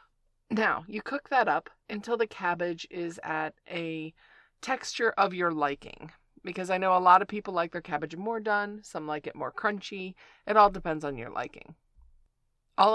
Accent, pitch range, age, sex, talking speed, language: American, 155-205 Hz, 30-49, female, 180 wpm, English